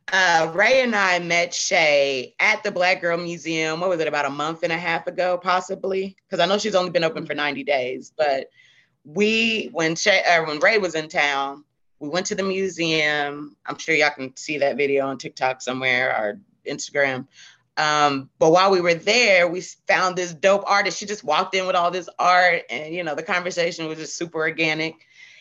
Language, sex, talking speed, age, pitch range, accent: English, female, 205 wpm, 30-49, 155-190 Hz, American